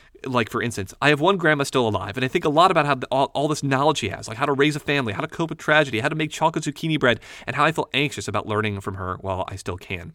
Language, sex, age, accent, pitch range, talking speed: English, male, 30-49, American, 100-150 Hz, 315 wpm